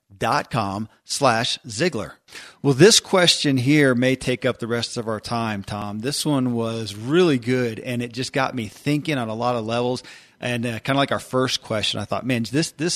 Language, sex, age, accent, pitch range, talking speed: English, male, 40-59, American, 115-140 Hz, 215 wpm